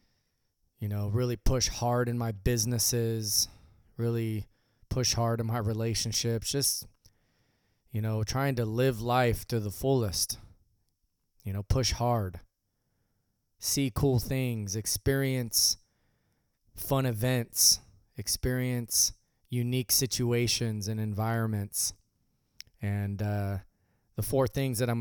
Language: English